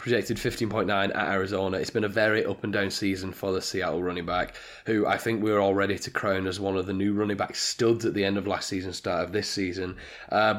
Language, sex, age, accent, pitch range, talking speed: English, male, 20-39, British, 95-105 Hz, 250 wpm